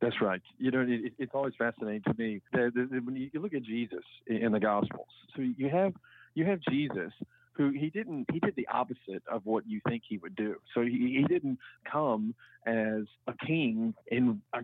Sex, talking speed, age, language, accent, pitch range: male, 195 wpm, 40-59, English, American, 125-180 Hz